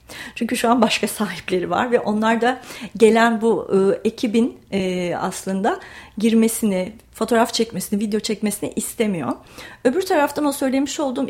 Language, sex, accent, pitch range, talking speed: Turkish, female, native, 210-255 Hz, 125 wpm